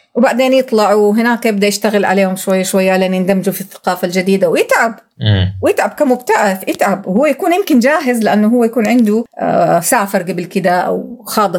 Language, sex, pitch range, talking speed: Arabic, female, 185-230 Hz, 155 wpm